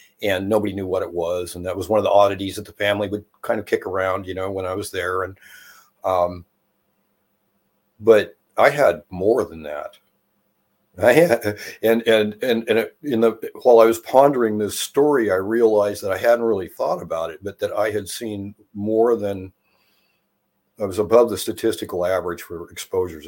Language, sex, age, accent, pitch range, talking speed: English, male, 50-69, American, 95-110 Hz, 190 wpm